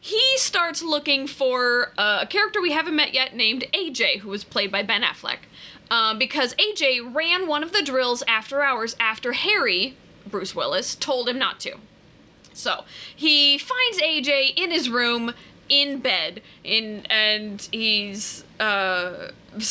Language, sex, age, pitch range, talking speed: English, female, 20-39, 215-310 Hz, 150 wpm